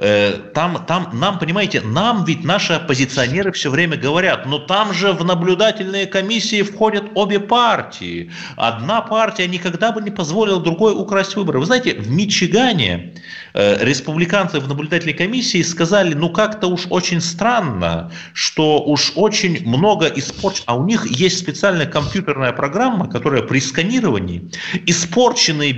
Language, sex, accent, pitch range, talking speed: Russian, male, native, 135-205 Hz, 140 wpm